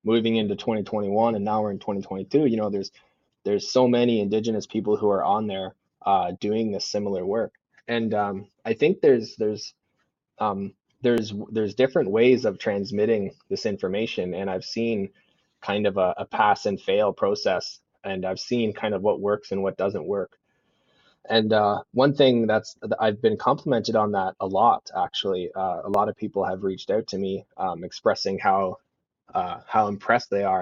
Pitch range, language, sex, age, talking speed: 95-110 Hz, French, male, 20-39, 180 wpm